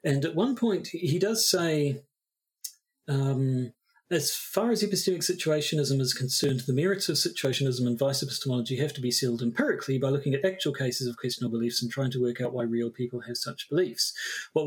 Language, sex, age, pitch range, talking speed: English, male, 40-59, 125-180 Hz, 190 wpm